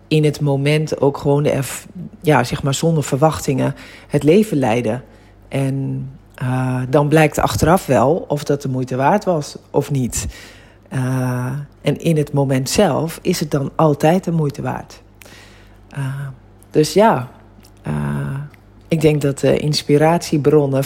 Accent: Dutch